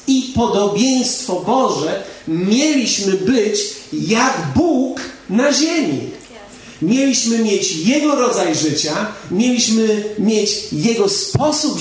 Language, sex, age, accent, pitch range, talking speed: Polish, male, 40-59, native, 160-220 Hz, 90 wpm